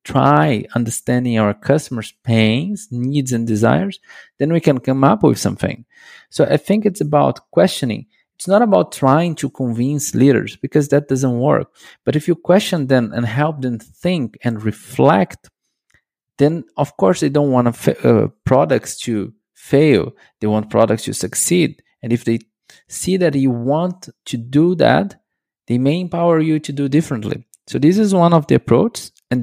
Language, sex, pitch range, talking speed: English, male, 120-160 Hz, 170 wpm